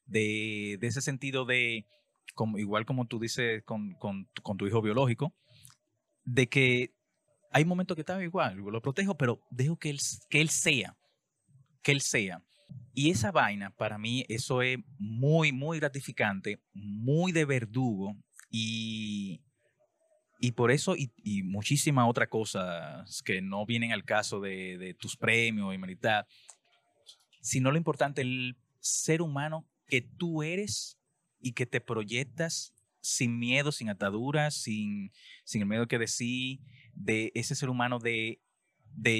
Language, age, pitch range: Spanish, 30-49, 110-145 Hz